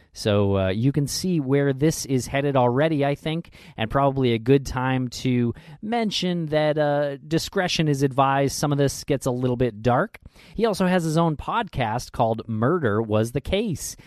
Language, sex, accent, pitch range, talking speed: English, male, American, 120-160 Hz, 185 wpm